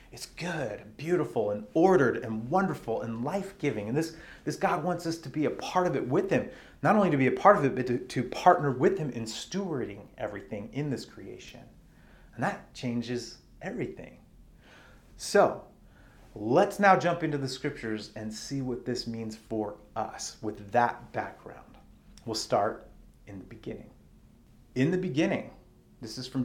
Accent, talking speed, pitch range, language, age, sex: American, 170 wpm, 115-140 Hz, English, 30-49, male